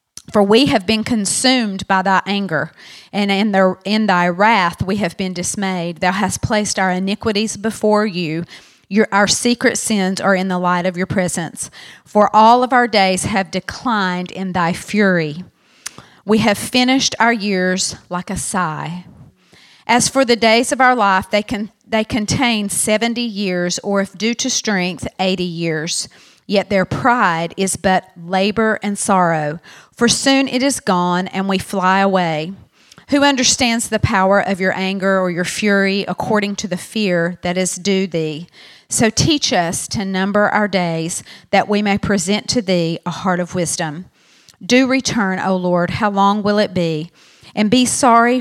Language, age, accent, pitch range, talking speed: English, 40-59, American, 180-215 Hz, 170 wpm